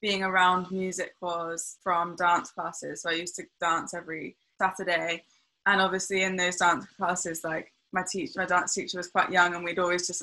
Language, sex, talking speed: English, female, 195 wpm